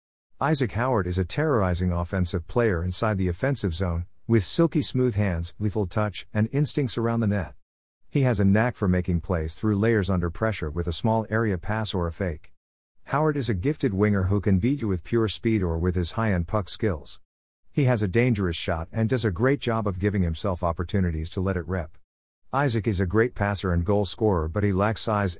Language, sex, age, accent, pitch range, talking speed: English, male, 50-69, American, 90-115 Hz, 210 wpm